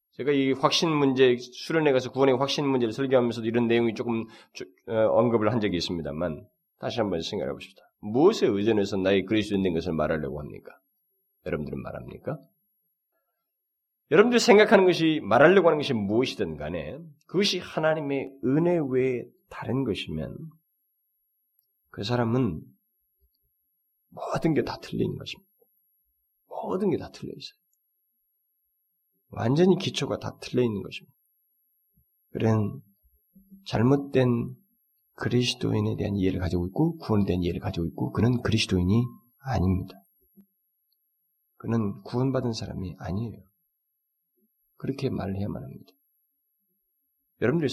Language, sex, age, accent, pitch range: Korean, male, 30-49, native, 100-165 Hz